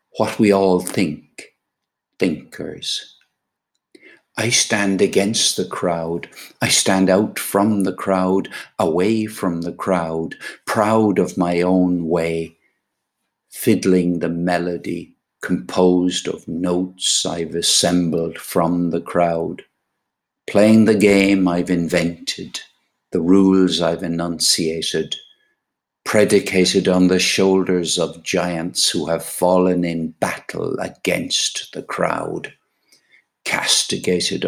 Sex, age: male, 60-79